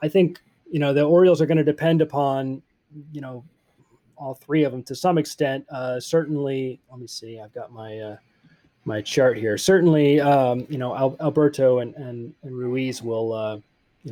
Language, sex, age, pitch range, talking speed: English, male, 30-49, 125-160 Hz, 185 wpm